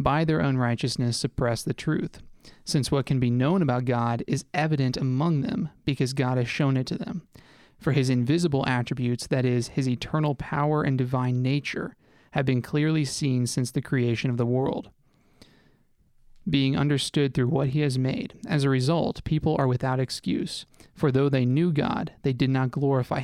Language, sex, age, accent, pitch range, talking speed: English, male, 30-49, American, 130-150 Hz, 180 wpm